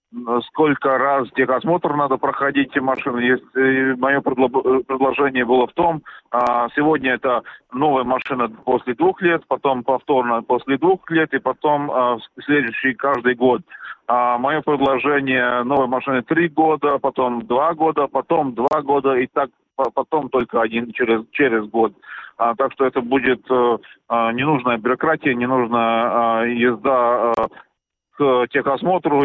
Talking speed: 120 wpm